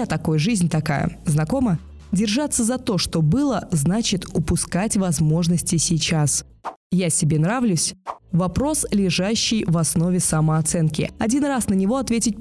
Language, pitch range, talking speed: Russian, 165-220 Hz, 125 wpm